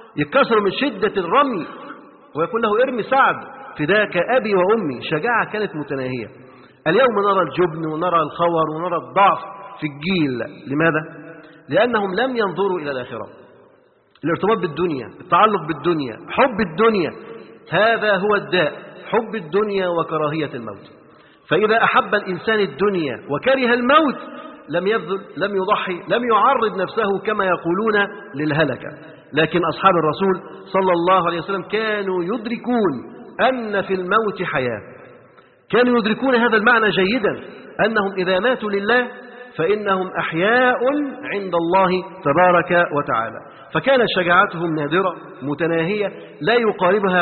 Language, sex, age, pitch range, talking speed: Arabic, male, 50-69, 165-220 Hz, 115 wpm